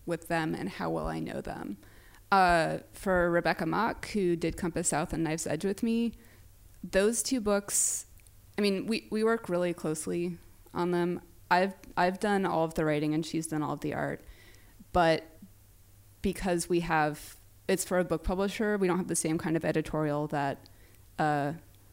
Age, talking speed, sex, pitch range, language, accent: 20-39, 180 wpm, female, 115-180 Hz, English, American